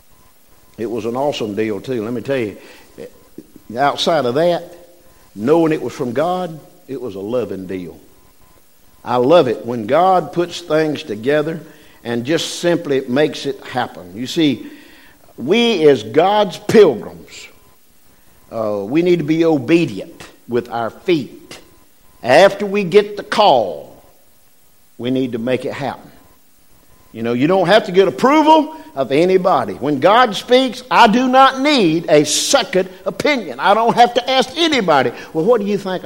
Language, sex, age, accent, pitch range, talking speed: English, male, 50-69, American, 135-195 Hz, 155 wpm